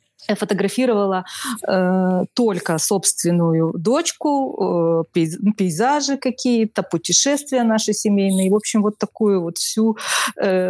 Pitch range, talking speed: 185-225 Hz, 105 wpm